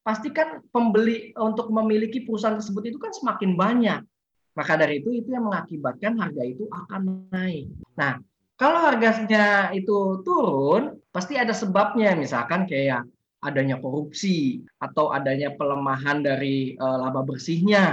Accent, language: native, Indonesian